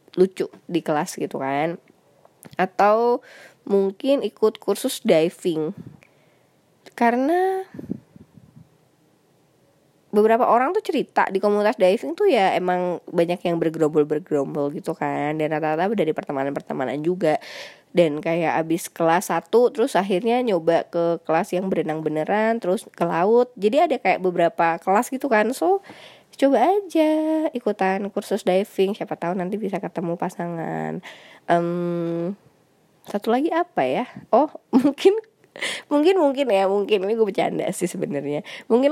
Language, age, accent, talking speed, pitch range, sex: Indonesian, 20-39, native, 130 wpm, 170-235 Hz, female